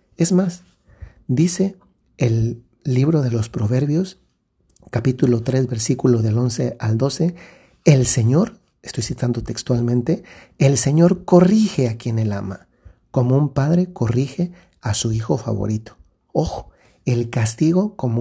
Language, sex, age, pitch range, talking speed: Spanish, male, 50-69, 115-160 Hz, 130 wpm